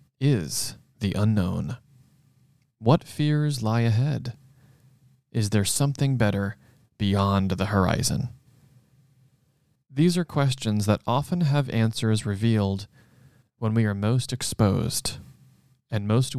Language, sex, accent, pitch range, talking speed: English, male, American, 100-130 Hz, 105 wpm